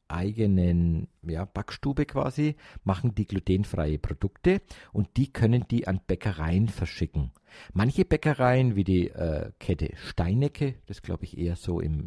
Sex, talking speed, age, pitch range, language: male, 135 wpm, 50-69, 85-115 Hz, German